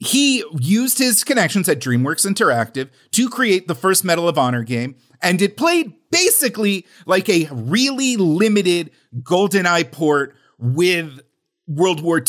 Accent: American